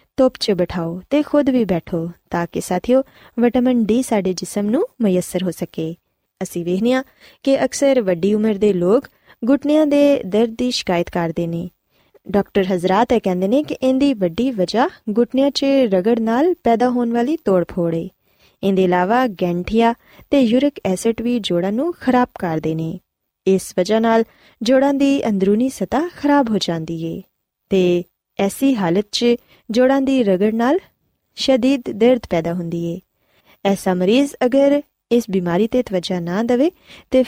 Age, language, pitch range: 20-39, Punjabi, 185-260 Hz